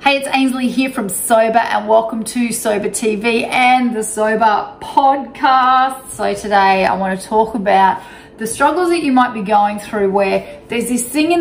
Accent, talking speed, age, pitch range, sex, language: Australian, 180 wpm, 30-49, 205-250 Hz, female, English